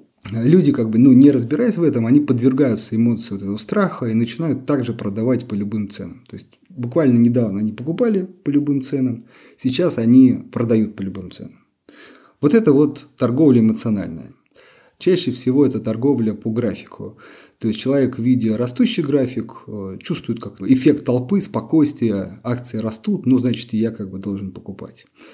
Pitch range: 110-140 Hz